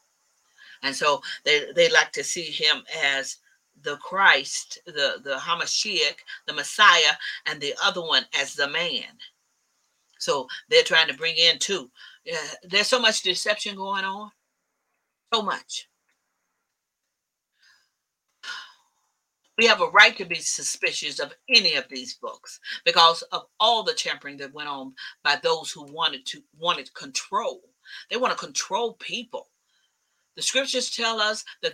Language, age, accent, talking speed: English, 40-59, American, 145 wpm